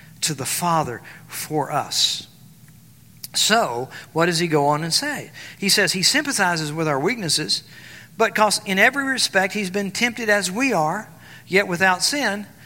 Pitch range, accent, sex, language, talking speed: 180-275 Hz, American, male, English, 160 wpm